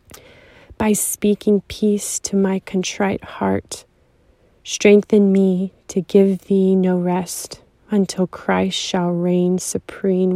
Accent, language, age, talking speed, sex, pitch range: American, English, 30-49, 110 wpm, female, 180-195 Hz